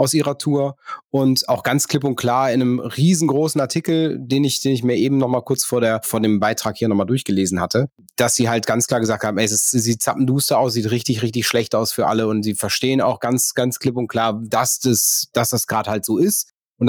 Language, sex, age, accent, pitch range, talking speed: German, male, 30-49, German, 110-130 Hz, 250 wpm